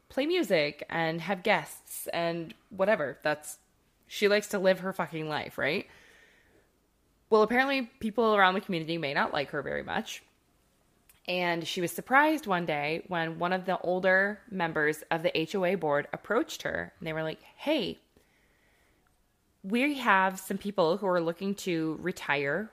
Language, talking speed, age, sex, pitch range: English, 160 wpm, 20-39, female, 160-210 Hz